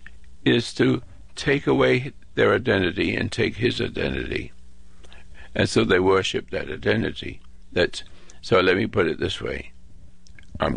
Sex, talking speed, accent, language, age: male, 140 wpm, American, English, 60-79